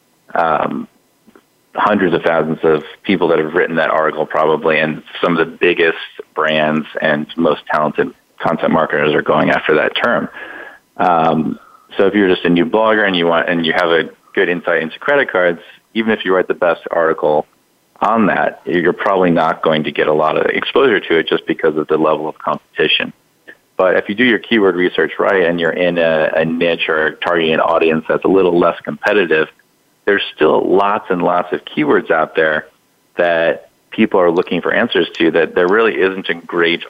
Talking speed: 195 wpm